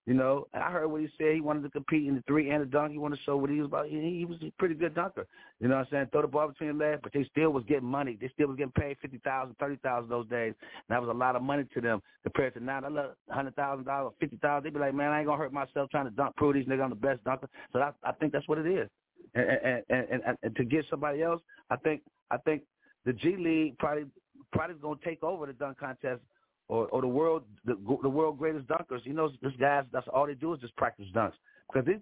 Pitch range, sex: 140-185 Hz, male